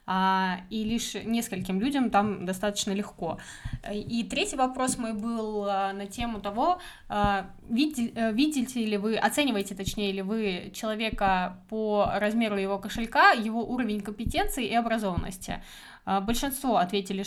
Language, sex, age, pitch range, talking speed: Russian, female, 20-39, 200-245 Hz, 120 wpm